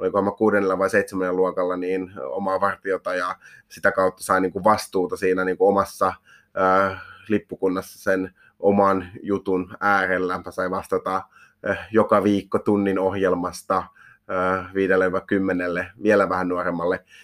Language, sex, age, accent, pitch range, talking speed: Finnish, male, 30-49, native, 95-100 Hz, 105 wpm